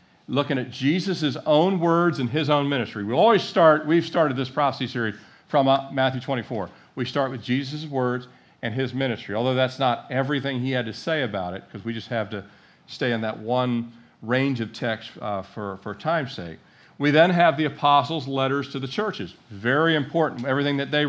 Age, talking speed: 50-69, 200 wpm